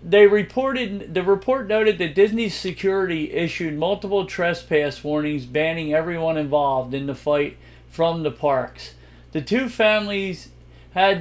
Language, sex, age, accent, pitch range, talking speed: English, male, 50-69, American, 150-190 Hz, 135 wpm